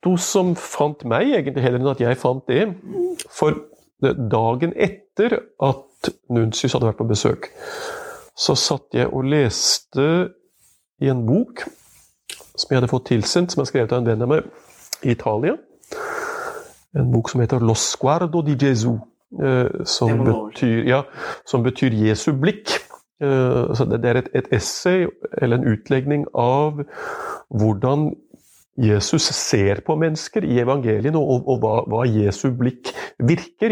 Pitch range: 115-170 Hz